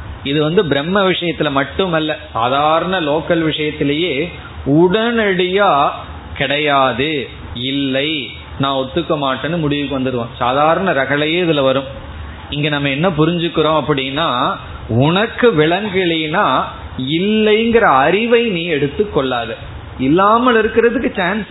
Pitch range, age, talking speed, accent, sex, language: 140-195 Hz, 30-49, 80 wpm, native, male, Tamil